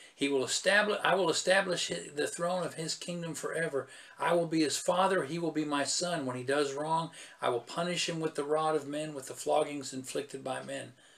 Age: 50-69